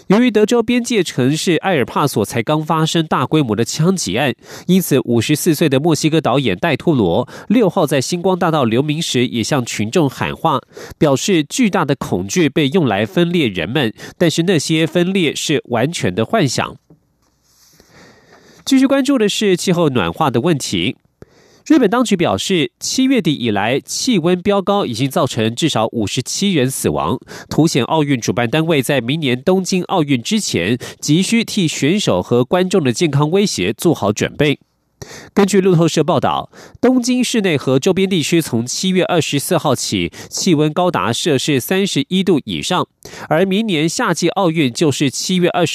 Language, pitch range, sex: German, 135-190 Hz, male